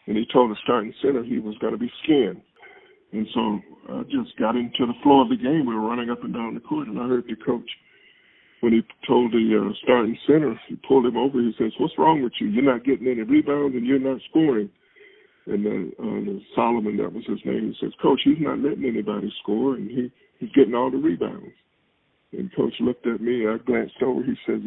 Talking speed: 225 wpm